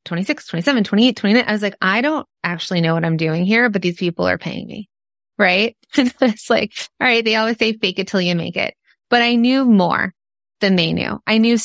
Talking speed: 225 wpm